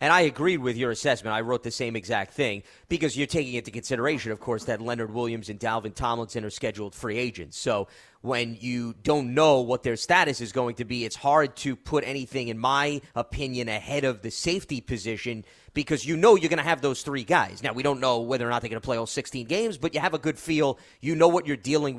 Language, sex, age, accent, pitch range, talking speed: English, male, 30-49, American, 125-160 Hz, 245 wpm